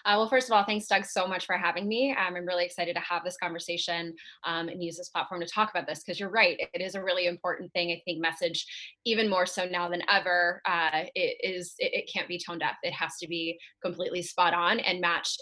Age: 20-39